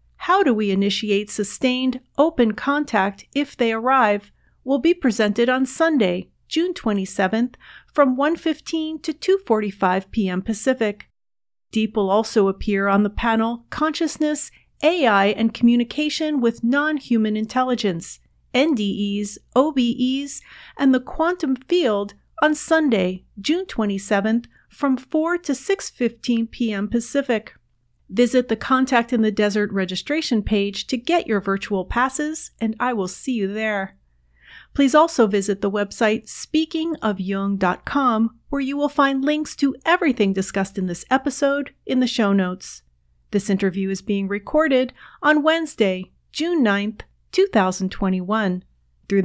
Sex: female